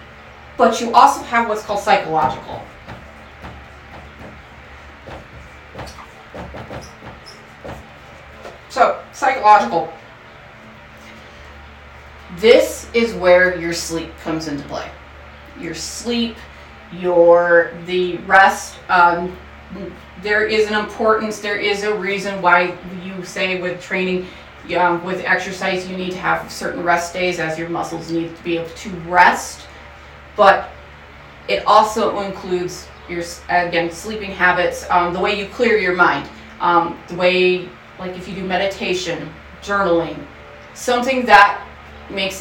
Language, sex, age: English, female, 30-49